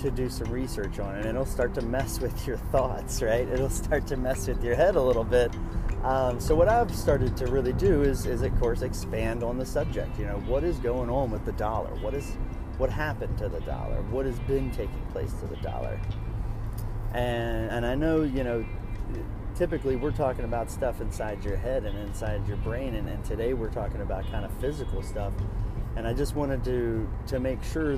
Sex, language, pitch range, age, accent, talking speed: male, English, 100-125 Hz, 30-49, American, 215 wpm